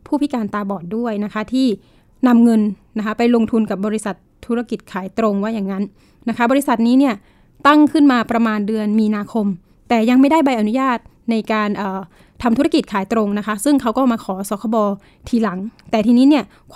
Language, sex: Thai, female